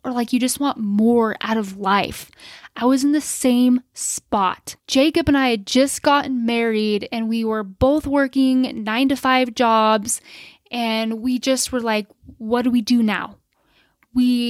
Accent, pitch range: American, 225-265 Hz